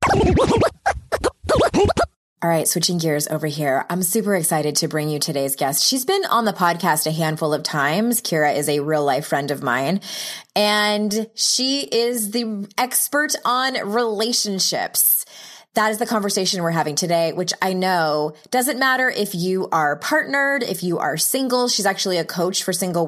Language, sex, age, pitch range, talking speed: English, female, 20-39, 165-230 Hz, 165 wpm